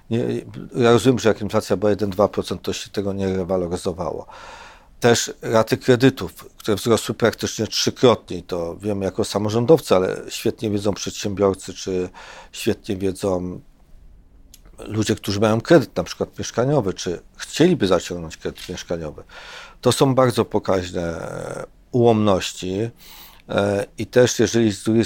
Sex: male